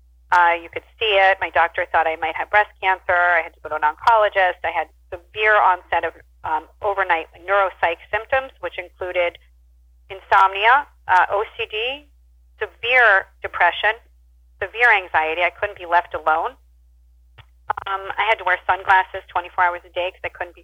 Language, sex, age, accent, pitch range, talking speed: English, female, 40-59, American, 160-195 Hz, 165 wpm